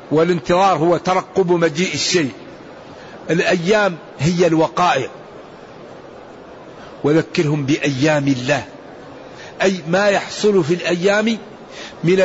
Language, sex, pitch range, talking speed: Arabic, male, 160-190 Hz, 85 wpm